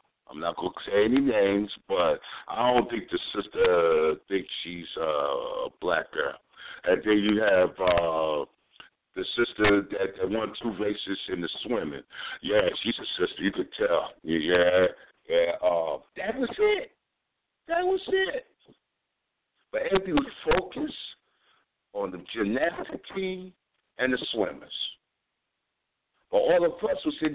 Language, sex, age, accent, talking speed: English, male, 60-79, American, 145 wpm